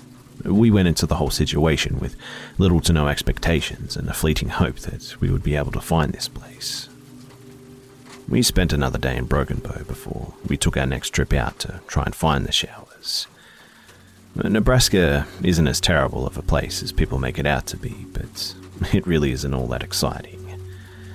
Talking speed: 180 wpm